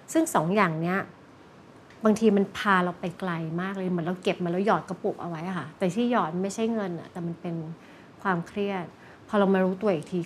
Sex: female